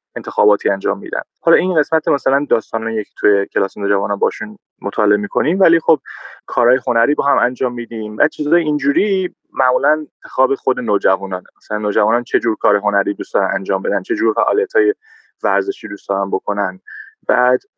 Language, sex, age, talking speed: Persian, male, 20-39, 160 wpm